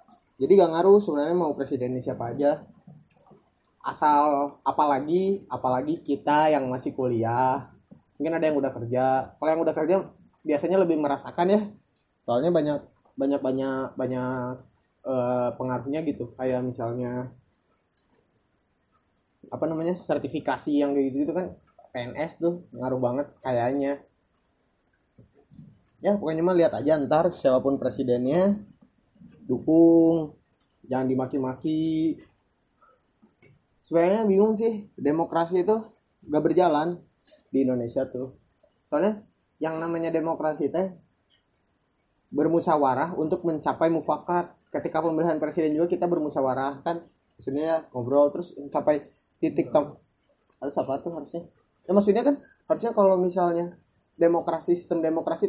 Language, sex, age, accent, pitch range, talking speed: Indonesian, male, 20-39, native, 135-175 Hz, 115 wpm